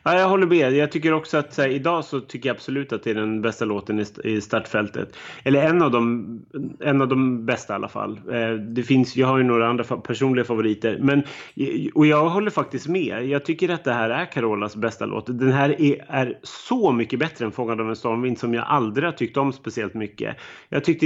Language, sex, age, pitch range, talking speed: Swedish, male, 30-49, 115-140 Hz, 230 wpm